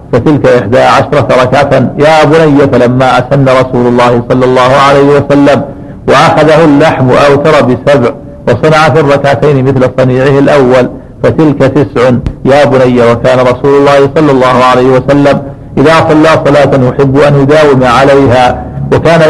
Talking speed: 135 wpm